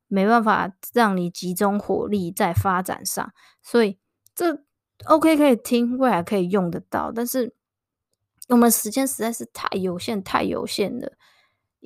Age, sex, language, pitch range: 20-39, female, Chinese, 195-245 Hz